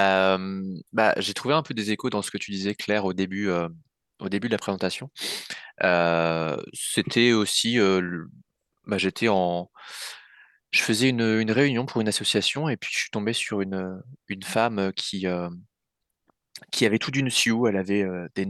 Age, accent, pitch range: 20-39, French, 95-110 Hz